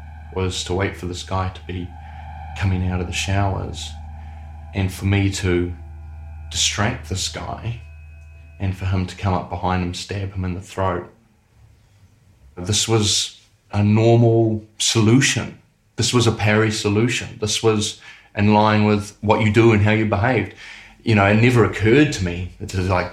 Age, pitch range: 30-49, 85-110 Hz